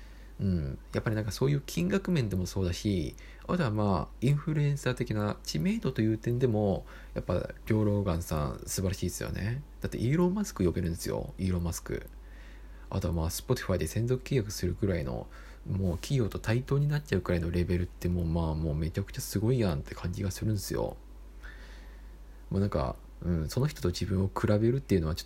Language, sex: Japanese, male